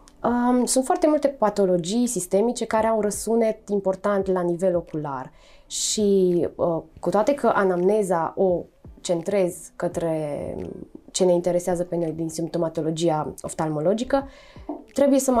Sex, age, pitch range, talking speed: female, 20-39, 175-225 Hz, 120 wpm